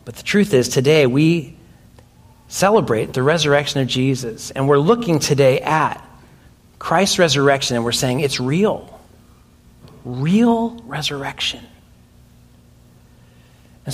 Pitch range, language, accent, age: 125-160 Hz, English, American, 40-59